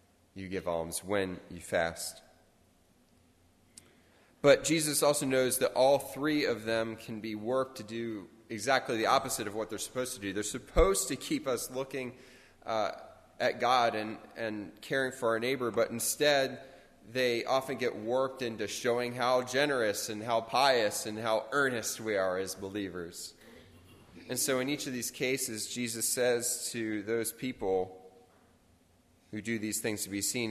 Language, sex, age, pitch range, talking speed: English, male, 20-39, 100-125 Hz, 165 wpm